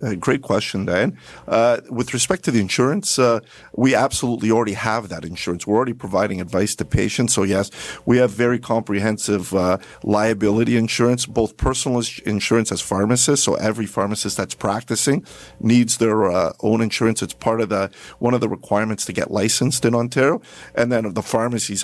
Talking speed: 170 wpm